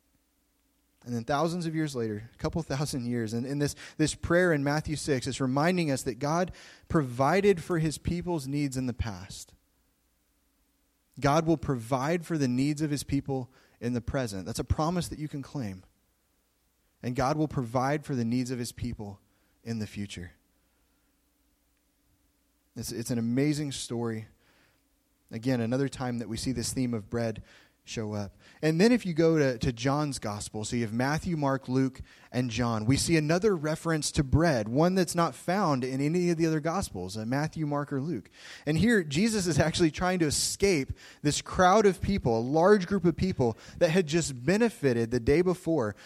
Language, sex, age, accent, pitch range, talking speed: English, male, 20-39, American, 120-165 Hz, 185 wpm